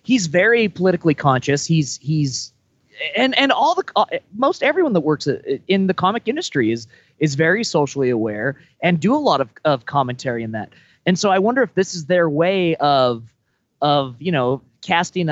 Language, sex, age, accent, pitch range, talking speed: English, male, 30-49, American, 130-170 Hz, 180 wpm